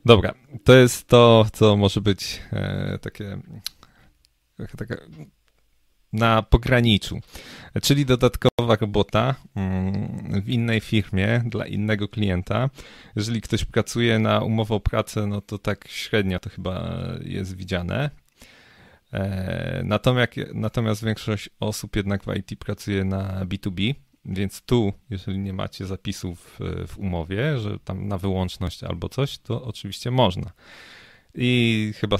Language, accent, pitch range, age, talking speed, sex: Polish, native, 95-115 Hz, 30-49, 115 wpm, male